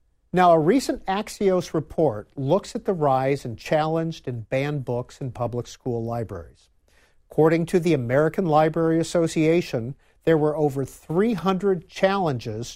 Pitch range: 125-170 Hz